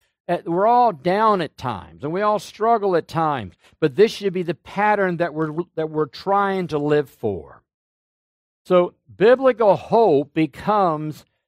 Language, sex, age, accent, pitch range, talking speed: English, male, 60-79, American, 140-190 Hz, 150 wpm